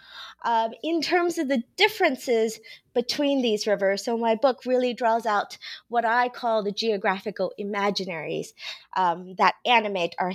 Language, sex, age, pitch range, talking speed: English, female, 20-39, 195-250 Hz, 145 wpm